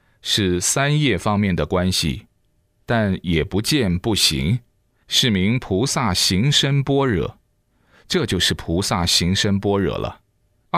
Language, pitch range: Chinese, 95-125 Hz